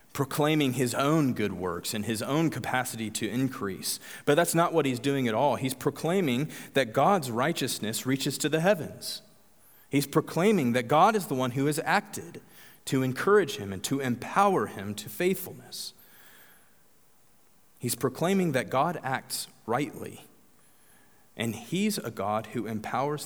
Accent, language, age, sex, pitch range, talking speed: American, English, 30-49, male, 110-145 Hz, 150 wpm